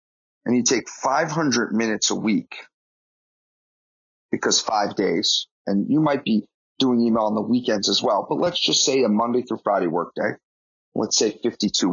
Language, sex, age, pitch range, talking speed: English, male, 30-49, 110-150 Hz, 165 wpm